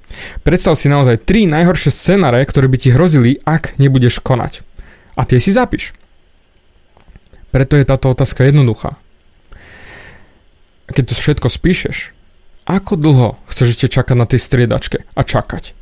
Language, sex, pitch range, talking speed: Slovak, male, 120-155 Hz, 135 wpm